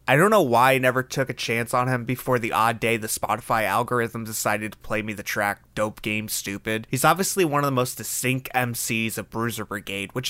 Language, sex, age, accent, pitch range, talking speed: English, male, 20-39, American, 110-145 Hz, 225 wpm